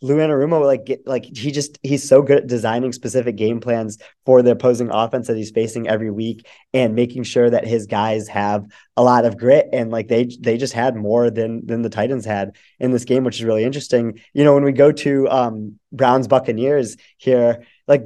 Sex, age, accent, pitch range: male, 20-39, American, 120-145 Hz